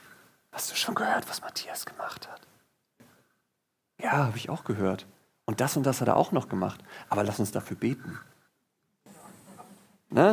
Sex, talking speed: male, 165 wpm